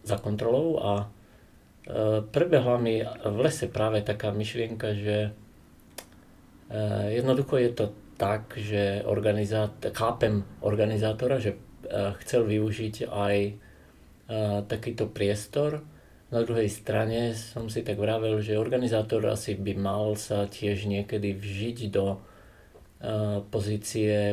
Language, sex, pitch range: Slovak, male, 100-115 Hz